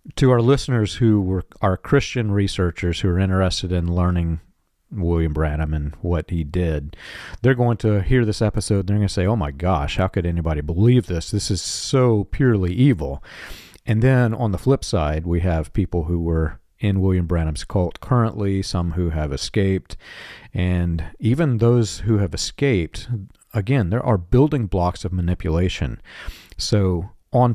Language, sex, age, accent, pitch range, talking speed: English, male, 40-59, American, 85-110 Hz, 170 wpm